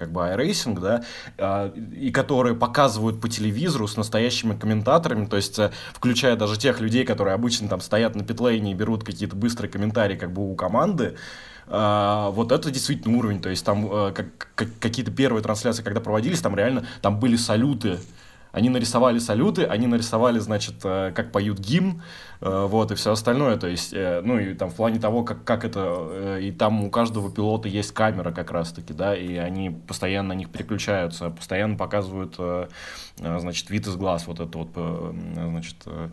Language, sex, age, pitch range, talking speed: Russian, male, 20-39, 90-110 Hz, 170 wpm